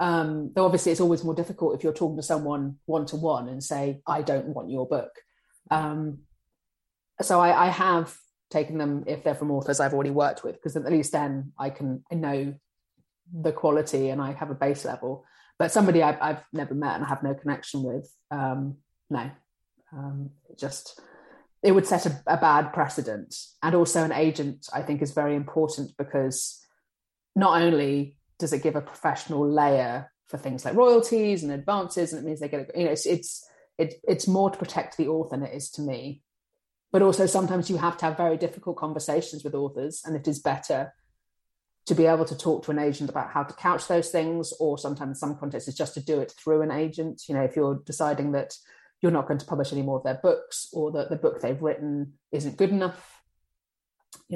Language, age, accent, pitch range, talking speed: English, 30-49, British, 140-170 Hz, 210 wpm